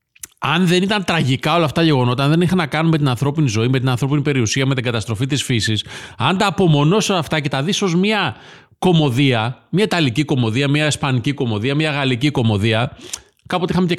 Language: Greek